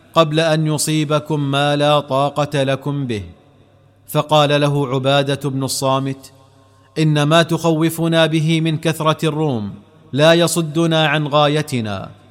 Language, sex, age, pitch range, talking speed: Arabic, male, 40-59, 135-160 Hz, 115 wpm